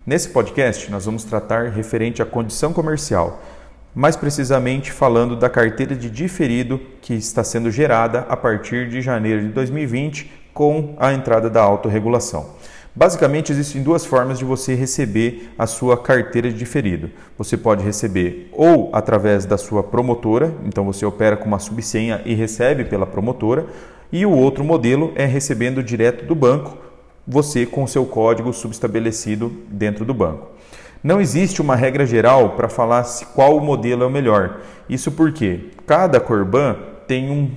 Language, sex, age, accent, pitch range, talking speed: Portuguese, male, 40-59, Brazilian, 115-140 Hz, 155 wpm